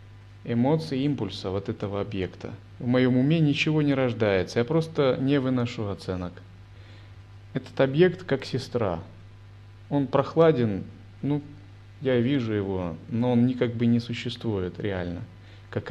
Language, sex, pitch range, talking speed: Russian, male, 100-135 Hz, 130 wpm